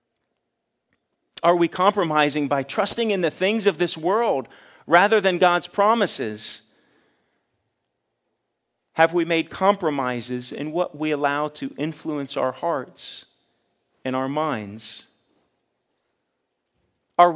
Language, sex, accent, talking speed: English, male, American, 105 wpm